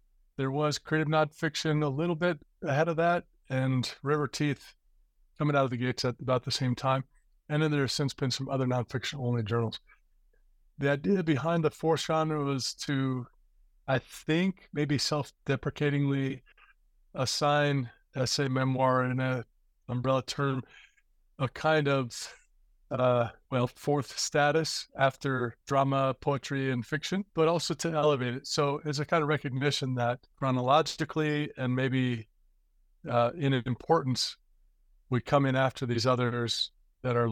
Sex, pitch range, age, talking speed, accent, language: male, 125-150 Hz, 30-49, 145 wpm, American, English